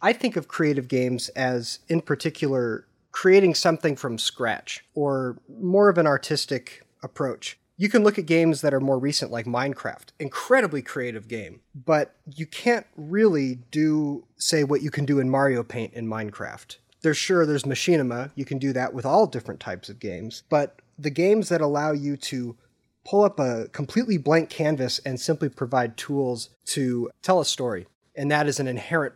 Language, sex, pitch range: English, male, 125-160 Hz